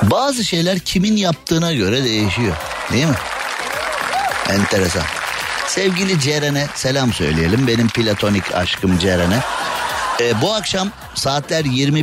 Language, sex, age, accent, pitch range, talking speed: Turkish, male, 50-69, native, 105-135 Hz, 100 wpm